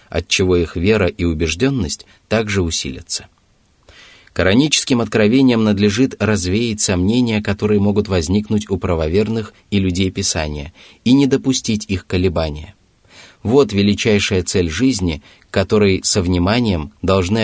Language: Russian